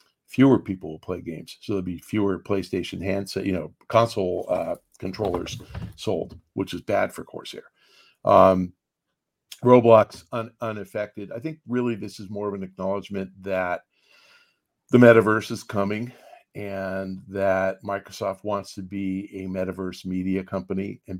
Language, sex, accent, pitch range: English, male, American, 95-105 Hz